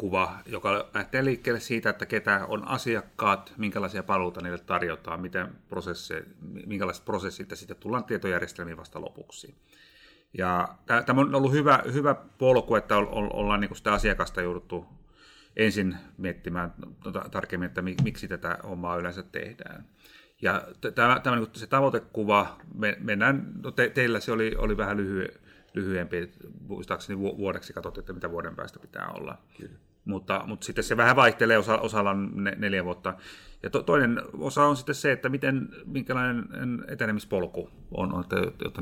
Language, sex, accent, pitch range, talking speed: Finnish, male, native, 95-120 Hz, 130 wpm